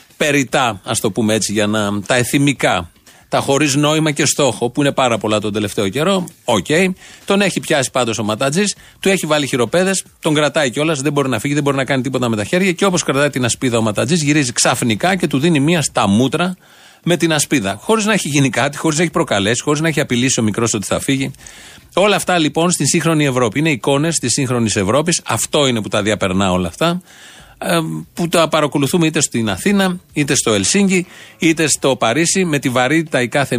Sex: male